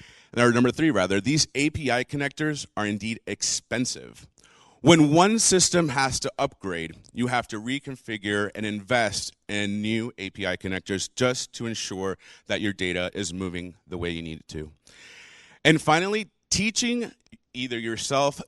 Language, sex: English, male